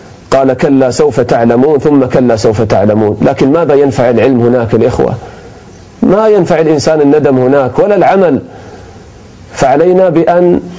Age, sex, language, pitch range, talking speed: 40-59, male, English, 130-190 Hz, 130 wpm